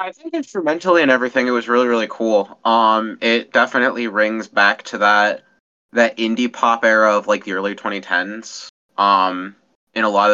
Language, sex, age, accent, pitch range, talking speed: English, male, 20-39, American, 105-120 Hz, 175 wpm